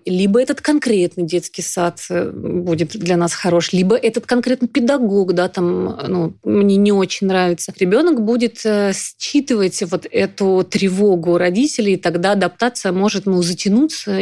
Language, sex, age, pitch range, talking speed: Russian, female, 30-49, 180-220 Hz, 140 wpm